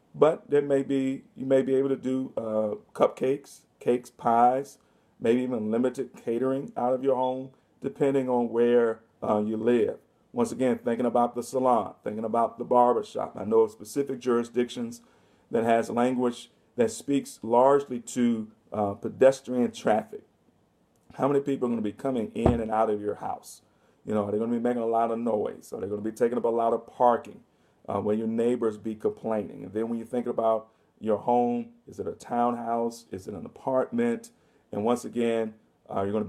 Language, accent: English, American